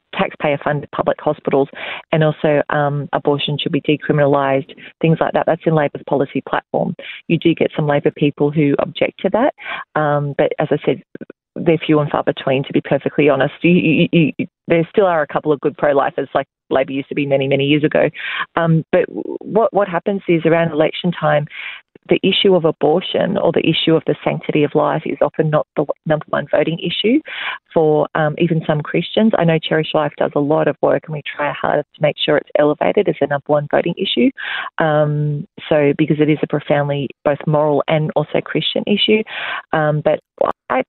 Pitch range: 150-170 Hz